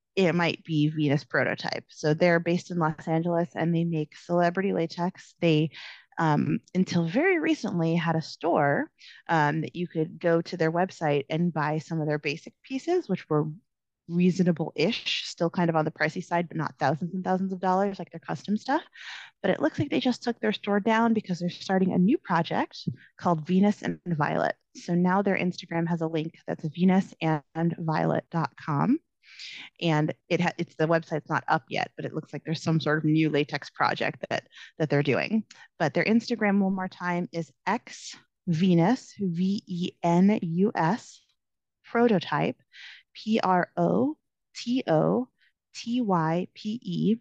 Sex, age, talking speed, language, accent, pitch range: female, 20-39, 160 wpm, English, American, 160-190 Hz